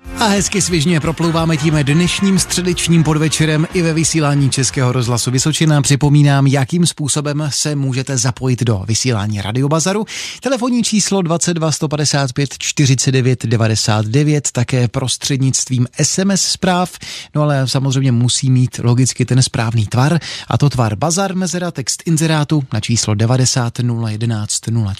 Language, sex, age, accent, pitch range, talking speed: Czech, male, 30-49, native, 120-160 Hz, 125 wpm